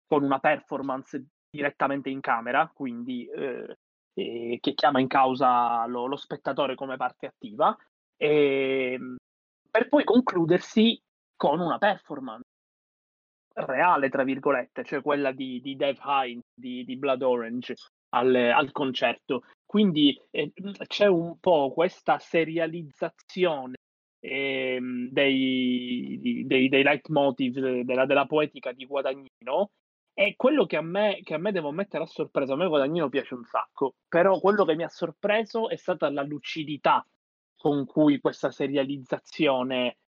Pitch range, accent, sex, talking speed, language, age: 135-170 Hz, native, male, 135 wpm, Italian, 20-39